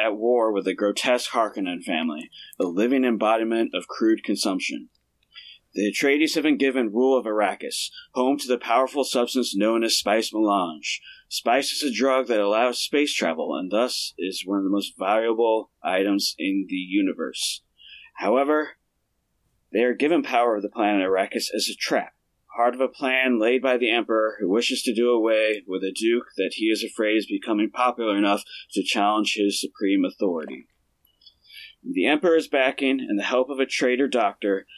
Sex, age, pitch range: male, 30-49, 110-140 Hz